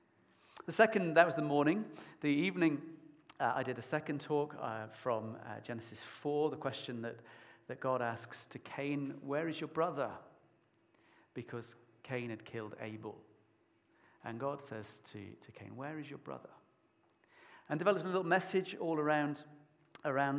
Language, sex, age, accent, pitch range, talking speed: English, male, 40-59, British, 115-155 Hz, 160 wpm